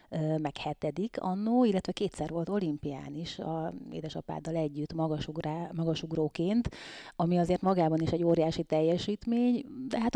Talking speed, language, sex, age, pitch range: 125 wpm, Hungarian, female, 30-49, 160-180 Hz